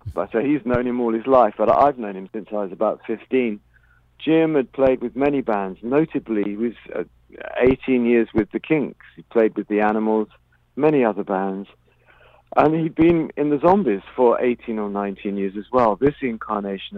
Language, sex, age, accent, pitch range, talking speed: English, male, 50-69, British, 100-125 Hz, 195 wpm